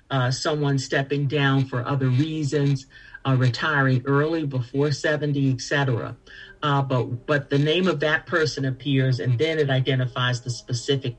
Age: 50-69